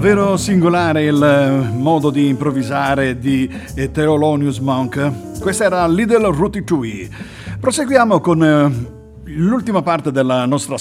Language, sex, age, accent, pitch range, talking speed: Italian, male, 50-69, native, 125-175 Hz, 110 wpm